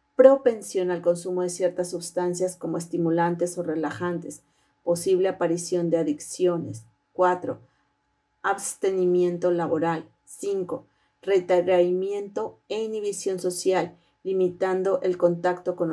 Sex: female